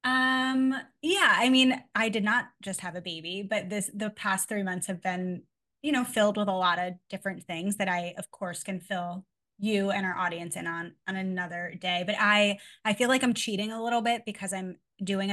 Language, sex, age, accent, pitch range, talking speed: English, female, 20-39, American, 180-210 Hz, 220 wpm